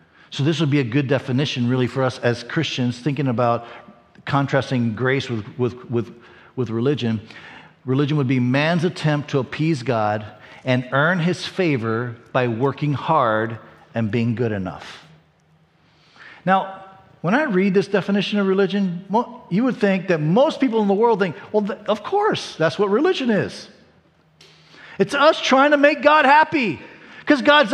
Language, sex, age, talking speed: English, male, 50-69, 155 wpm